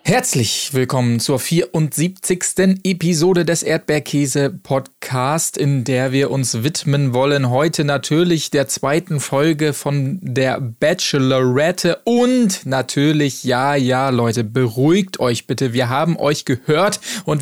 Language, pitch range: German, 130-160 Hz